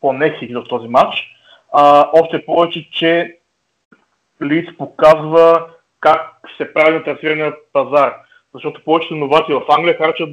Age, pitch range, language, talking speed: 20-39, 140-165 Hz, Bulgarian, 120 wpm